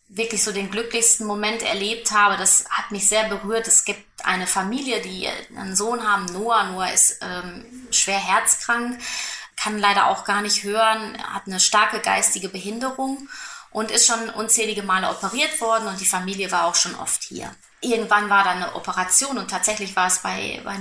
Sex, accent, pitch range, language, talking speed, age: female, German, 185-220 Hz, German, 180 wpm, 20-39